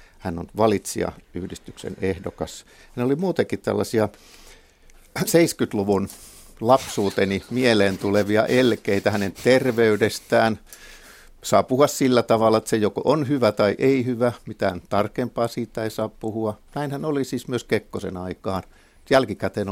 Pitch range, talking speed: 100-135 Hz, 120 wpm